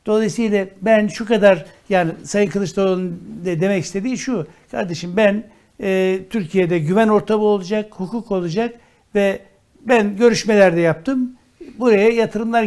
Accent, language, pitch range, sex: native, Turkish, 160-210 Hz, male